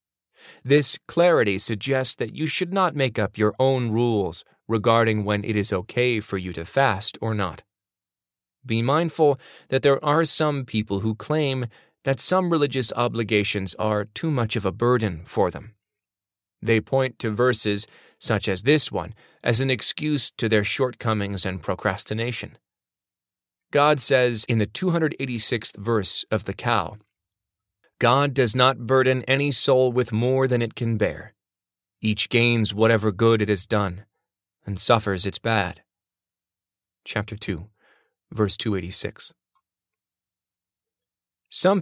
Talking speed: 140 wpm